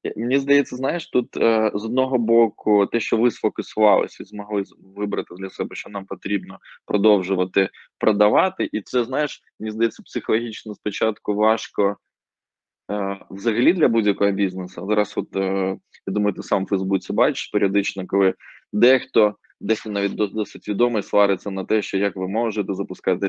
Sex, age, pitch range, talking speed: male, 20-39, 95-115 Hz, 145 wpm